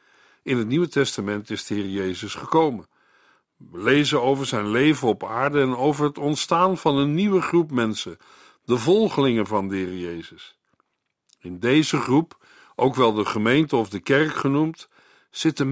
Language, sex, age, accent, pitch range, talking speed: Dutch, male, 50-69, Dutch, 120-160 Hz, 165 wpm